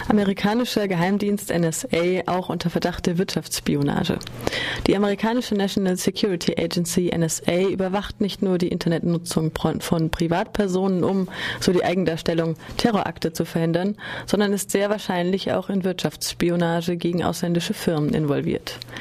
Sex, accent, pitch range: female, German, 165-200 Hz